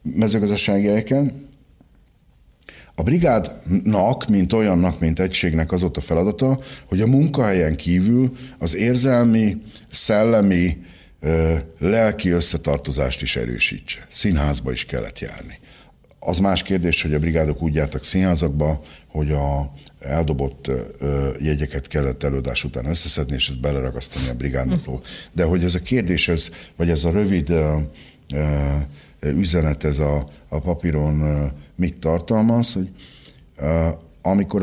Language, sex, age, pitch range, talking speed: Hungarian, male, 60-79, 75-95 Hz, 120 wpm